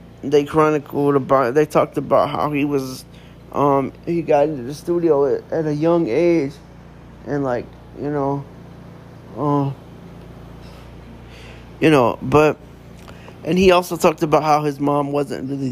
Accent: American